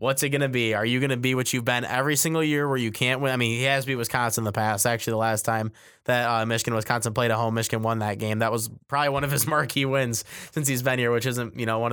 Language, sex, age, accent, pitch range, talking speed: English, male, 20-39, American, 115-135 Hz, 305 wpm